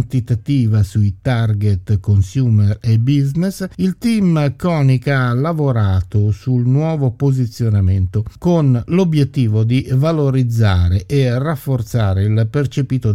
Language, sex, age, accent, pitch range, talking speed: Italian, male, 50-69, native, 110-140 Hz, 95 wpm